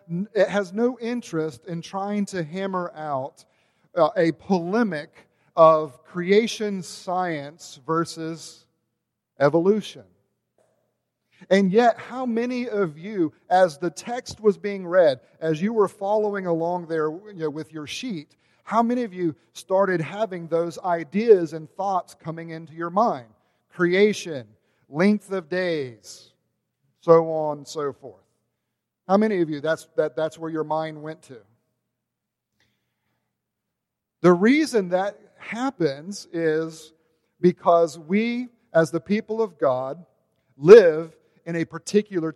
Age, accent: 40-59, American